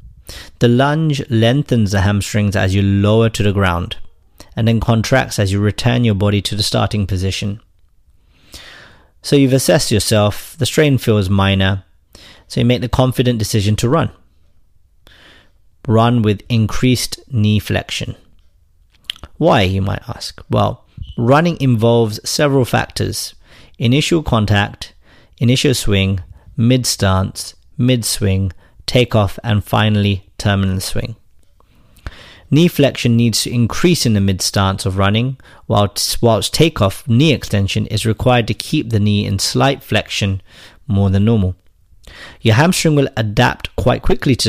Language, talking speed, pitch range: English, 135 wpm, 95-120 Hz